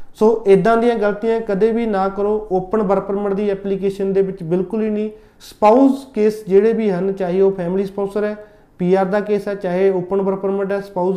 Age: 30-49